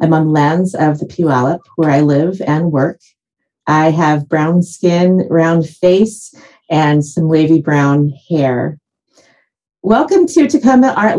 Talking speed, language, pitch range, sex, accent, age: 145 wpm, English, 170-230 Hz, female, American, 40-59